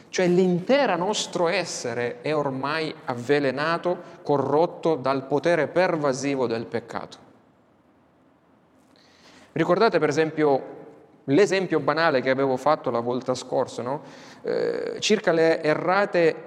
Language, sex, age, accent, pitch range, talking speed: Italian, male, 30-49, native, 145-180 Hz, 105 wpm